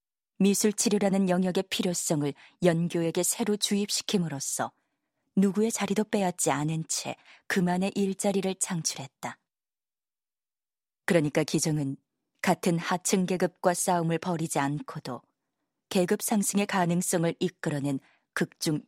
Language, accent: Korean, native